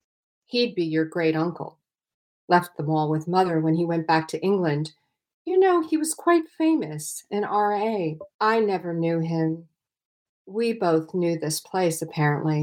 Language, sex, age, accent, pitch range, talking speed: English, female, 40-59, American, 160-205 Hz, 160 wpm